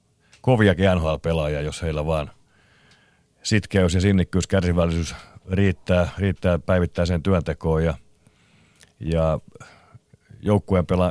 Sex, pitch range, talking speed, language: male, 80-95 Hz, 85 wpm, Finnish